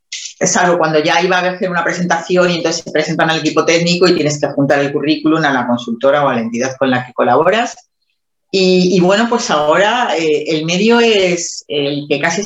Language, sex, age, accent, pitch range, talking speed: Spanish, female, 30-49, Spanish, 155-195 Hz, 215 wpm